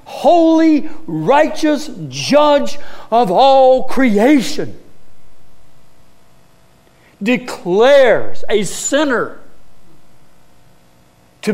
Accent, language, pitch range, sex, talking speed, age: American, English, 140-235 Hz, male, 50 wpm, 60-79